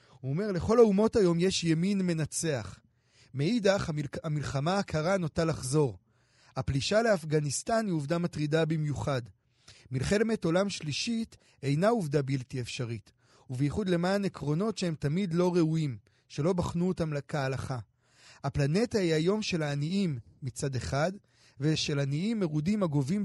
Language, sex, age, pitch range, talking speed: Hebrew, male, 30-49, 135-190 Hz, 125 wpm